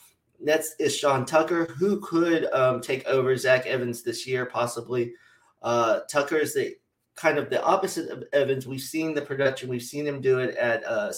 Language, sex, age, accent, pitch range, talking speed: English, male, 30-49, American, 120-145 Hz, 190 wpm